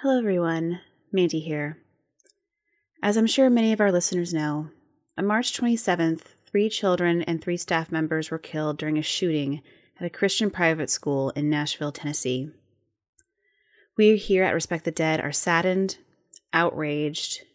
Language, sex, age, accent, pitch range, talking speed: English, female, 30-49, American, 155-195 Hz, 145 wpm